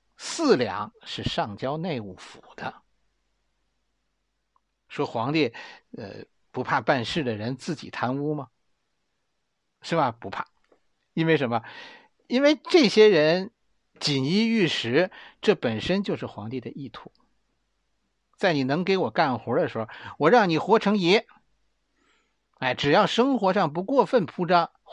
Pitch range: 135-225 Hz